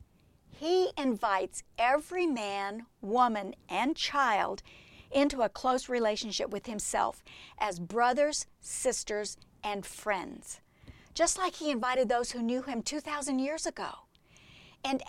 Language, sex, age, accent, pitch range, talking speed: English, female, 50-69, American, 215-300 Hz, 120 wpm